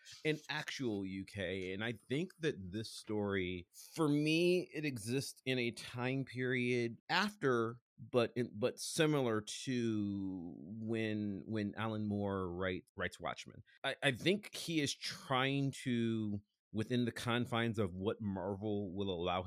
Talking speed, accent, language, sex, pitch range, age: 140 wpm, American, English, male, 100-125 Hz, 30-49